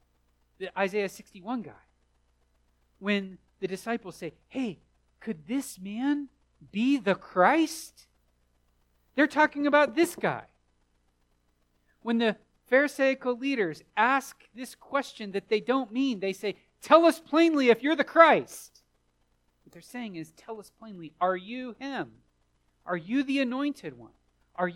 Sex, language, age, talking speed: male, English, 40-59, 135 wpm